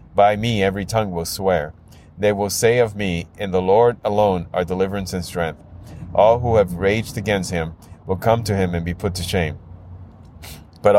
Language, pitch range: English, 85-100 Hz